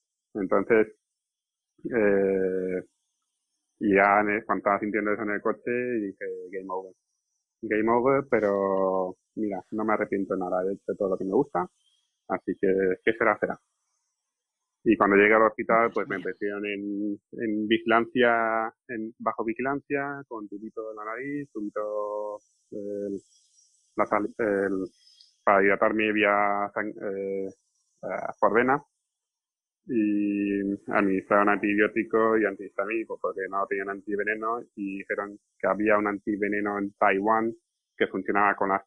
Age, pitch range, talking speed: 30-49, 100-110 Hz, 130 wpm